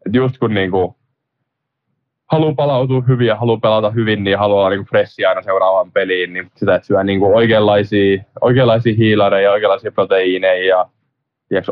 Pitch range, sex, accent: 95-115 Hz, male, native